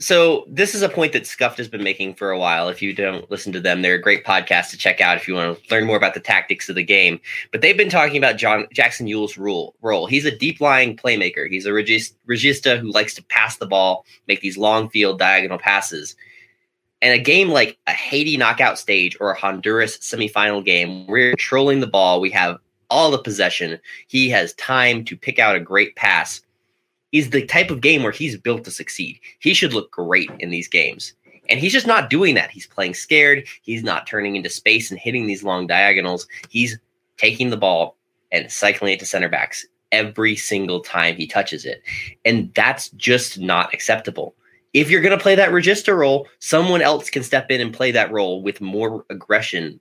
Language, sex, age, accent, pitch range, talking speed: English, male, 20-39, American, 95-135 Hz, 210 wpm